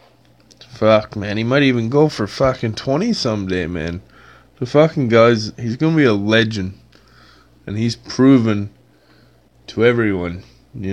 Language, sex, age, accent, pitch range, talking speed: English, male, 20-39, American, 85-120 Hz, 130 wpm